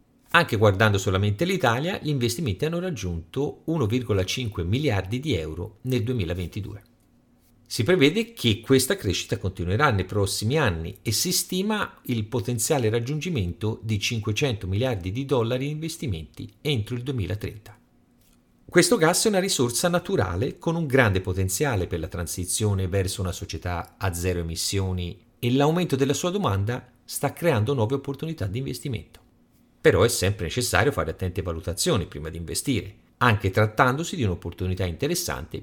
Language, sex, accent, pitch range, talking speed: Italian, male, native, 95-135 Hz, 140 wpm